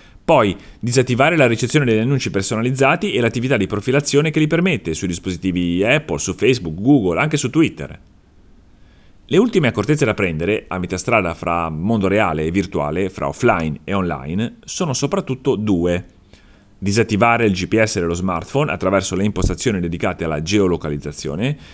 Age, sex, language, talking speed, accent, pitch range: 30-49, male, Italian, 150 wpm, native, 90-135 Hz